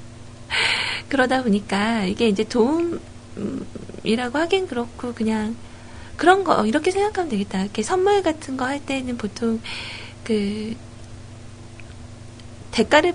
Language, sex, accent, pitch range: Korean, female, native, 200-270 Hz